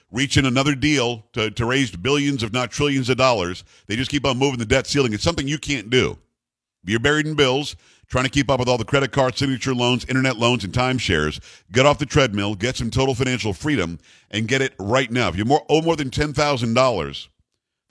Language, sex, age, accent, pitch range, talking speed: English, male, 50-69, American, 115-140 Hz, 230 wpm